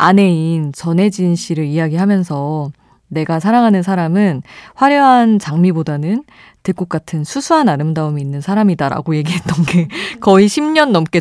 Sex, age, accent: female, 20-39, native